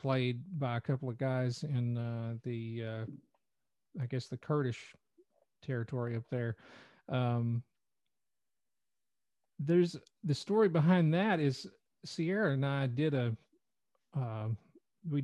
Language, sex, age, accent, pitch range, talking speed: English, male, 40-59, American, 125-155 Hz, 120 wpm